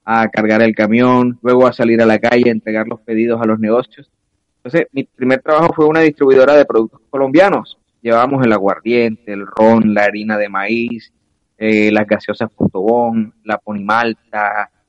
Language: Spanish